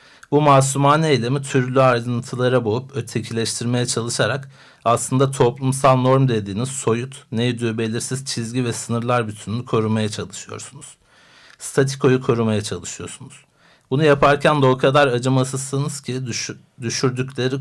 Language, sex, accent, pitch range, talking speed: Turkish, male, native, 115-135 Hz, 110 wpm